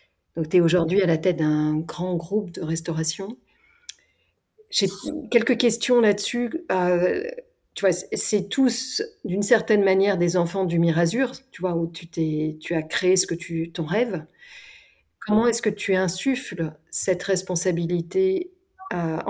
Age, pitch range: 40-59, 170-200 Hz